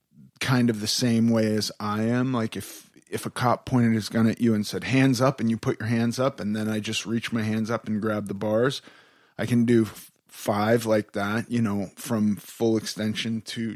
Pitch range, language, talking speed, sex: 110-130 Hz, English, 225 wpm, male